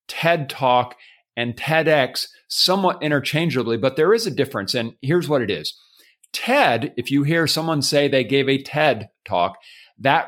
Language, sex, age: English, male, 40-59